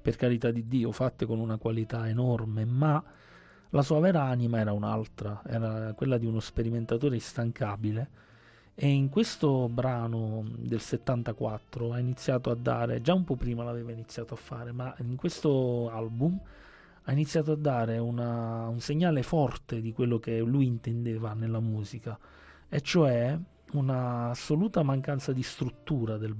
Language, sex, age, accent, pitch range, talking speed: Italian, male, 30-49, native, 115-145 Hz, 150 wpm